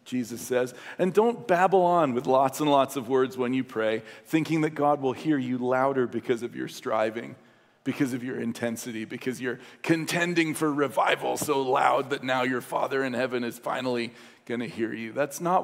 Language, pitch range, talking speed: English, 125-155 Hz, 195 wpm